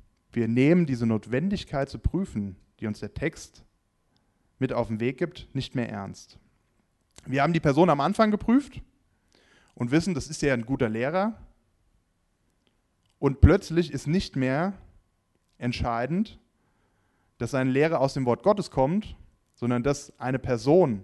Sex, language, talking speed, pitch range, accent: male, German, 145 wpm, 115-165 Hz, German